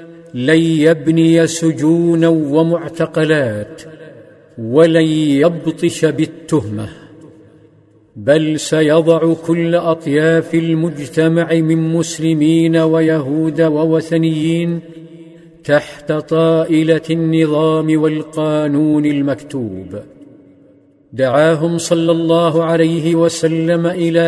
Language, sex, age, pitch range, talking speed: Arabic, male, 50-69, 155-165 Hz, 65 wpm